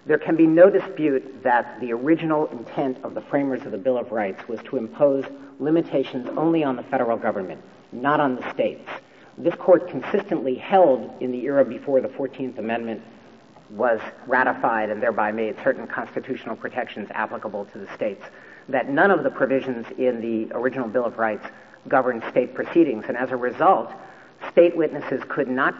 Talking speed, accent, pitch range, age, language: 175 wpm, American, 130-165 Hz, 50-69, English